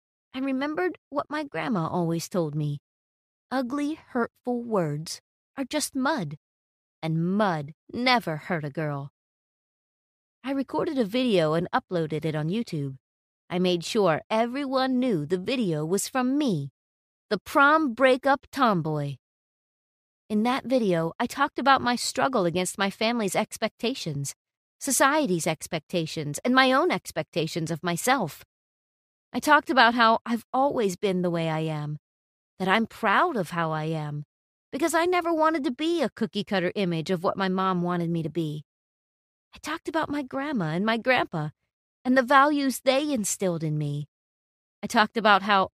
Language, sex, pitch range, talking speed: English, female, 165-260 Hz, 155 wpm